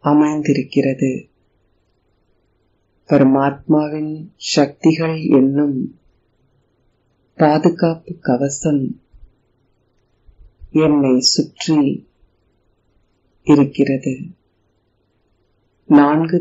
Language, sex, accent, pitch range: Tamil, female, native, 105-150 Hz